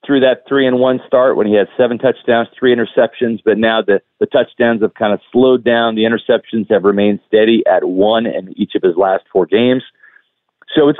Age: 40-59